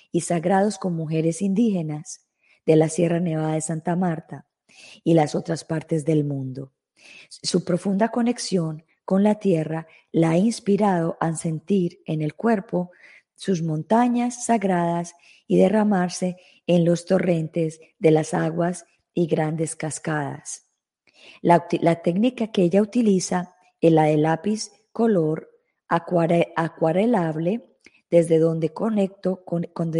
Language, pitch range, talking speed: Spanish, 165-195 Hz, 125 wpm